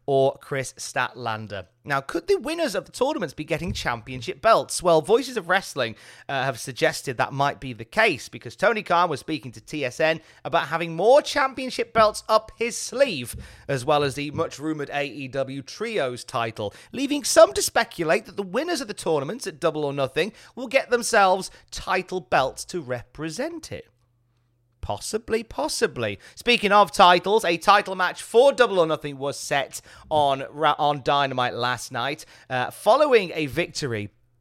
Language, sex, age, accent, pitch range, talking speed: English, male, 30-49, British, 135-190 Hz, 165 wpm